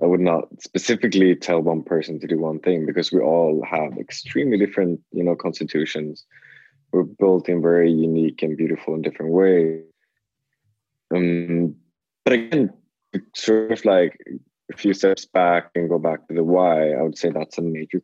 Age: 20-39